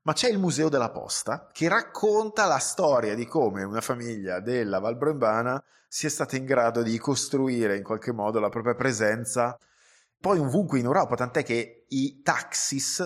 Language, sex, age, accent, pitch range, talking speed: Italian, male, 20-39, native, 110-140 Hz, 165 wpm